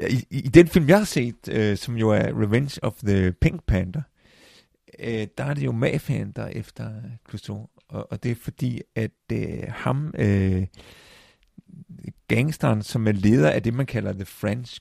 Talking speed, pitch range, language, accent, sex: 180 wpm, 100-130 Hz, Danish, native, male